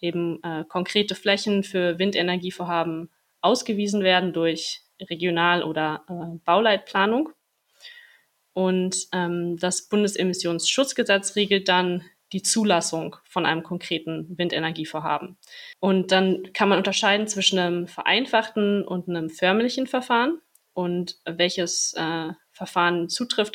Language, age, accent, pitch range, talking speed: German, 20-39, German, 165-205 Hz, 105 wpm